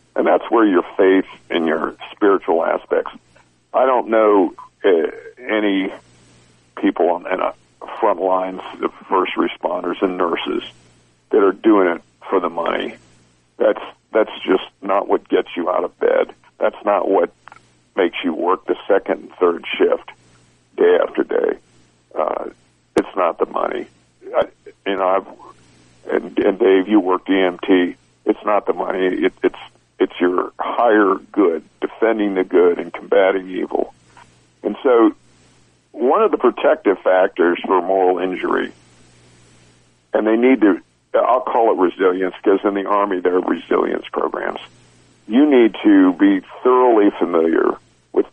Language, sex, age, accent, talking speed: English, male, 60-79, American, 145 wpm